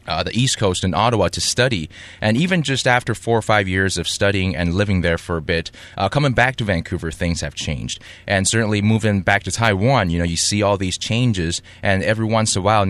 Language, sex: English, male